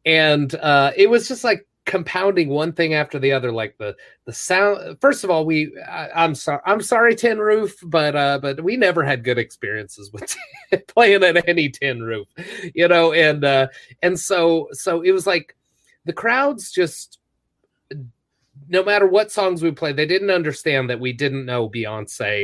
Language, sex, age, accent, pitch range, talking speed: English, male, 30-49, American, 135-175 Hz, 185 wpm